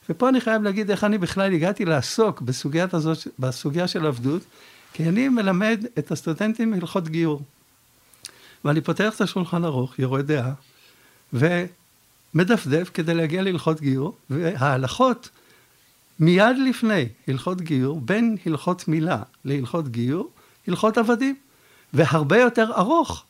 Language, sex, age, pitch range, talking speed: Hebrew, male, 60-79, 150-215 Hz, 125 wpm